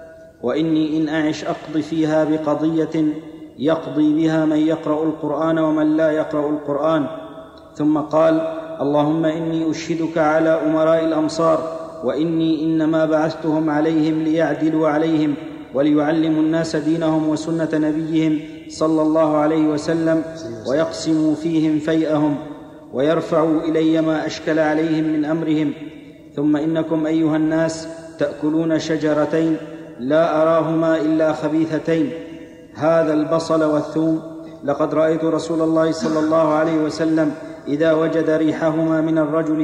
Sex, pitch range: male, 155-160 Hz